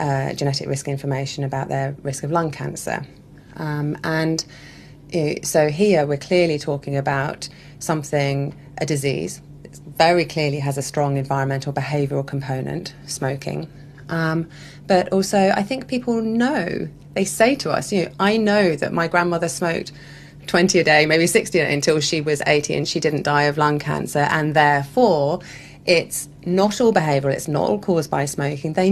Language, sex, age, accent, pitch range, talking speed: English, female, 30-49, British, 145-180 Hz, 160 wpm